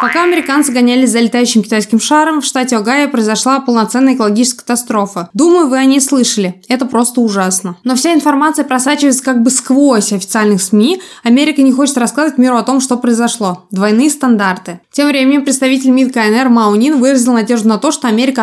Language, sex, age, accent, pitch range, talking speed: Russian, female, 20-39, native, 225-265 Hz, 175 wpm